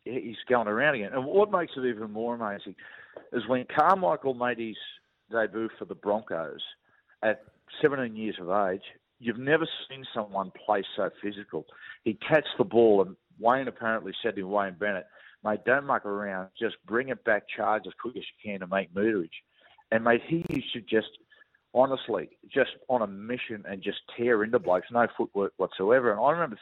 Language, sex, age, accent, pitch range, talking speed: English, male, 50-69, Australian, 110-135 Hz, 185 wpm